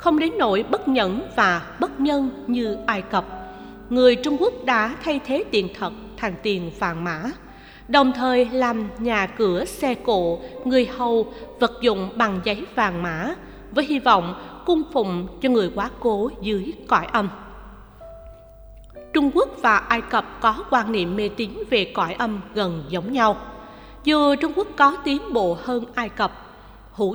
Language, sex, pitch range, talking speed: Vietnamese, female, 200-270 Hz, 170 wpm